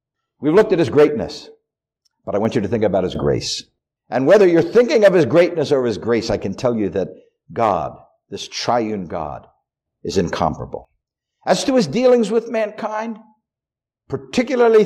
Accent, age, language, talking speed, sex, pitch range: American, 60-79, English, 170 wpm, male, 140-225 Hz